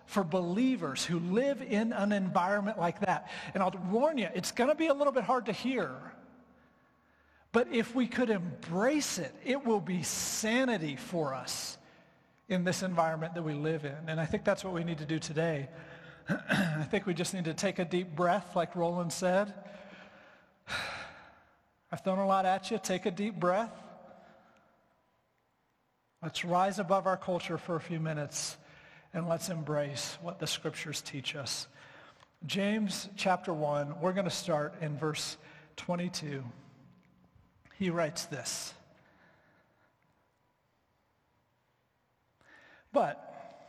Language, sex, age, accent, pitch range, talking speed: English, male, 40-59, American, 155-200 Hz, 145 wpm